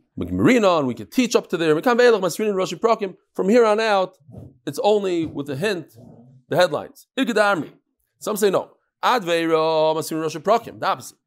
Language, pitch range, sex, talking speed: English, 155-220 Hz, male, 130 wpm